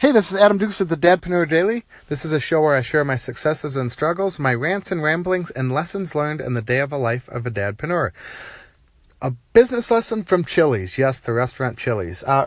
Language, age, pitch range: English, 30-49, 110-150 Hz